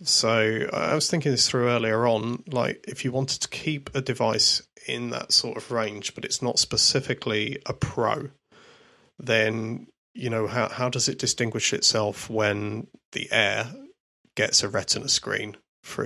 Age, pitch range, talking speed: 30-49, 110-135 Hz, 165 wpm